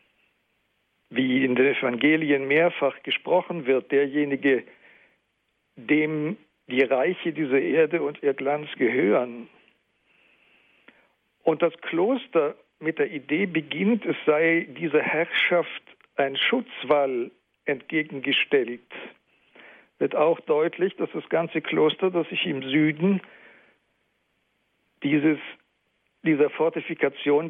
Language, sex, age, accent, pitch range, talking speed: German, male, 60-79, German, 135-165 Hz, 95 wpm